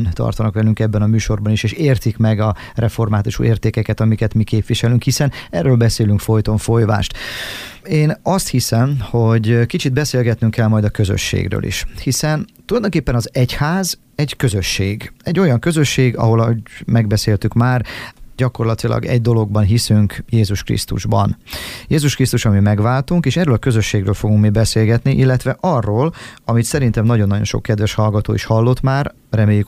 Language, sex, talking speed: Hungarian, male, 145 wpm